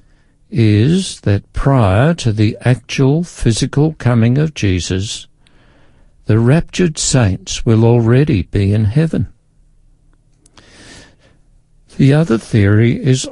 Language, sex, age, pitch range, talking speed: English, male, 60-79, 100-140 Hz, 100 wpm